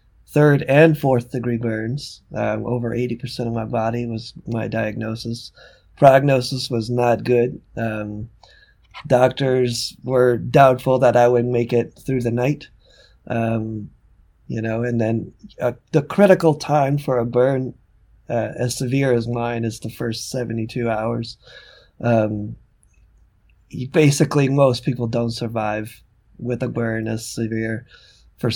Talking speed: 135 wpm